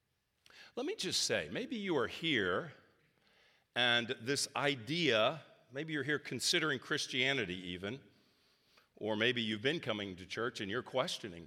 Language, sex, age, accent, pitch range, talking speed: English, male, 50-69, American, 115-170 Hz, 140 wpm